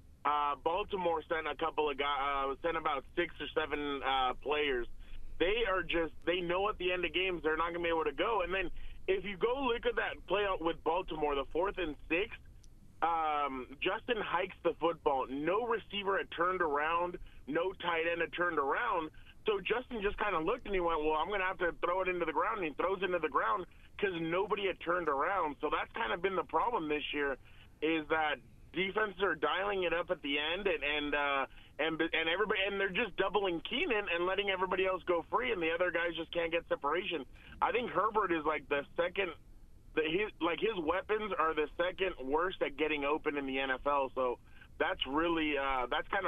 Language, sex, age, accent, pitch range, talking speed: English, male, 30-49, American, 150-185 Hz, 215 wpm